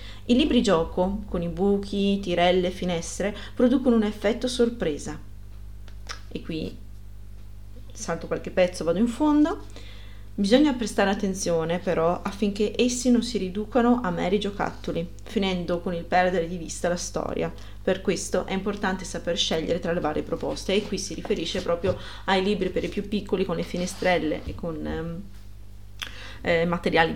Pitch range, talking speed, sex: 170-220 Hz, 150 wpm, female